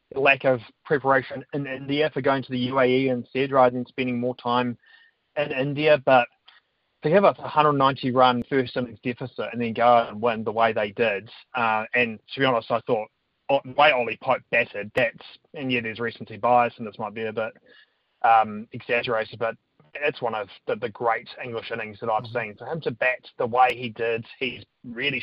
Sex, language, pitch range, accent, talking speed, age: male, English, 115-130 Hz, Australian, 195 wpm, 20-39